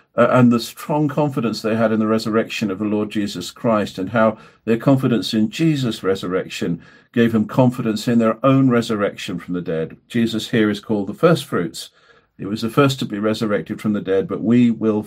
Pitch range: 105-120 Hz